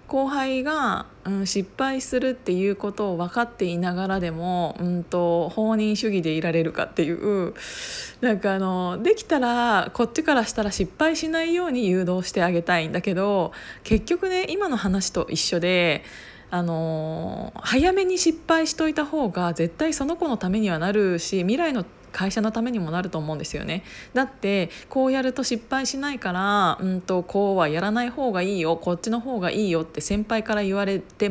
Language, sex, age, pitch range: Japanese, female, 20-39, 175-245 Hz